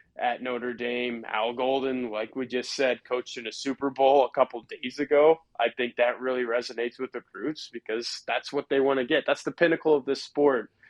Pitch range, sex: 115-130 Hz, male